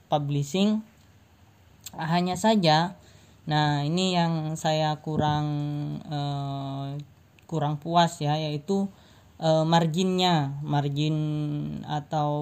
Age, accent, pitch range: 20-39, native, 145-160 Hz